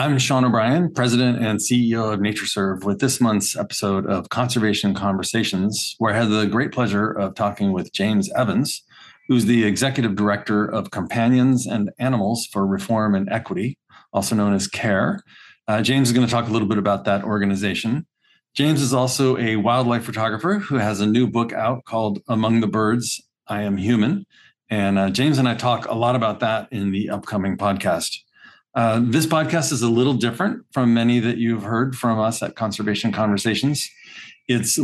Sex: male